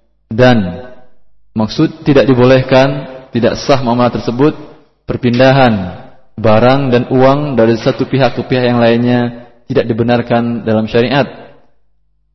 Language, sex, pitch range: English, male, 115-135 Hz